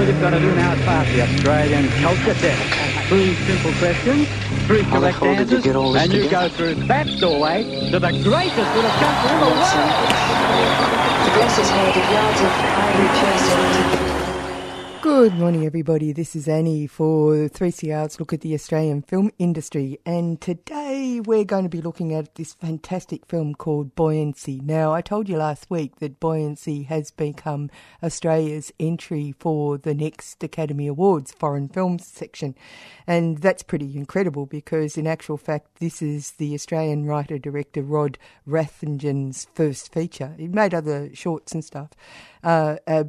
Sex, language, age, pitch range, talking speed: female, English, 60-79, 145-170 Hz, 155 wpm